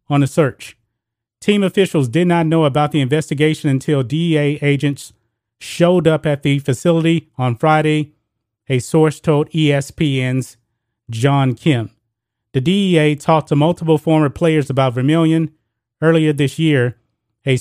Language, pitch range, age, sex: English, 125-155 Hz, 30-49, male